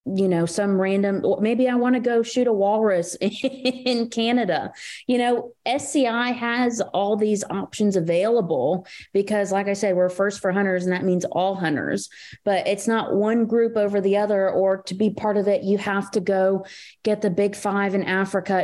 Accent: American